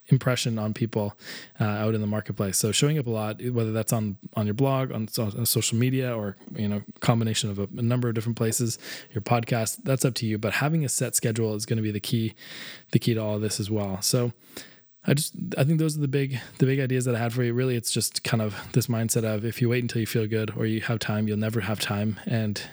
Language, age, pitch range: English, 20-39, 110-125 Hz